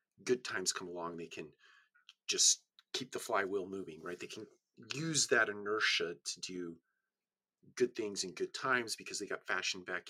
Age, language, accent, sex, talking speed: 40-59, English, American, male, 170 wpm